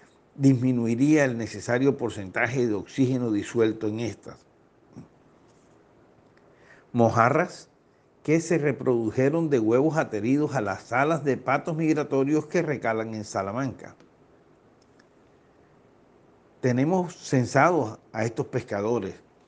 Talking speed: 95 wpm